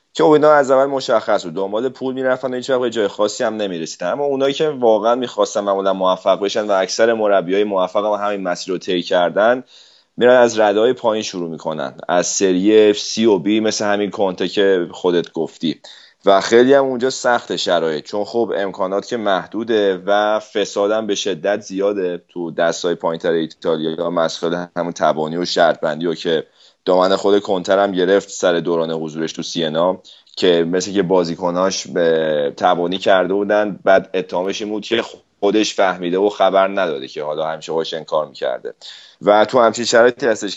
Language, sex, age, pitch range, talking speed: Persian, male, 30-49, 90-110 Hz, 170 wpm